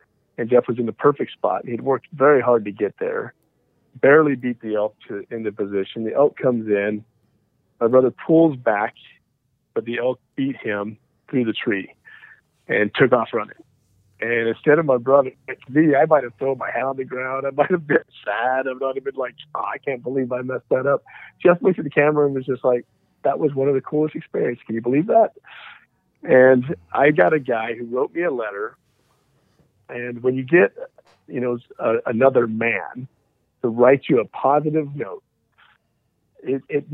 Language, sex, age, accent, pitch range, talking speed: English, male, 40-59, American, 115-140 Hz, 195 wpm